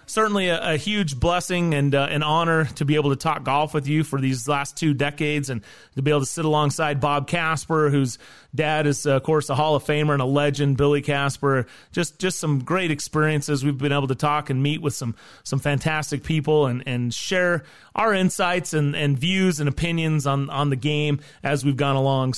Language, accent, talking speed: English, American, 215 wpm